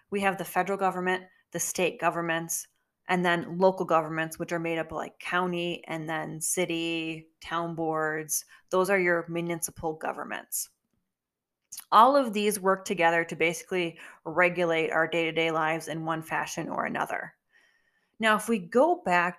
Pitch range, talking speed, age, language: 165-205 Hz, 150 wpm, 20-39, English